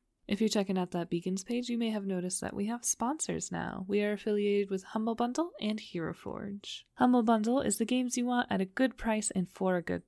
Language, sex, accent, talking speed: English, female, American, 240 wpm